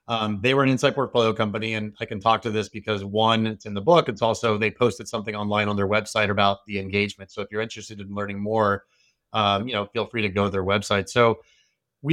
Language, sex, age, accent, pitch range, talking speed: English, male, 30-49, American, 105-120 Hz, 245 wpm